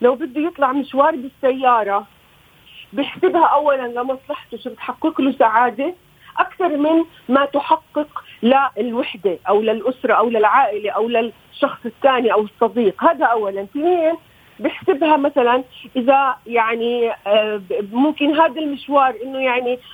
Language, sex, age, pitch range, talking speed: Arabic, female, 40-59, 235-300 Hz, 115 wpm